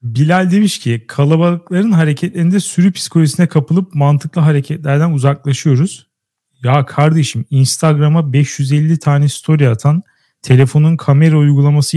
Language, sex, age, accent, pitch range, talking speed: Turkish, male, 40-59, native, 135-160 Hz, 105 wpm